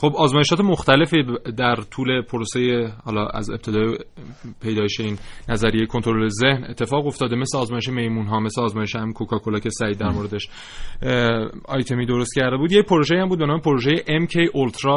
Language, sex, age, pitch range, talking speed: Persian, male, 30-49, 115-135 Hz, 165 wpm